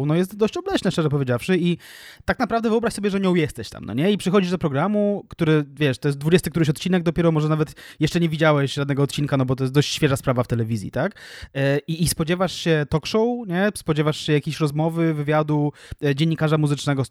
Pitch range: 140-175 Hz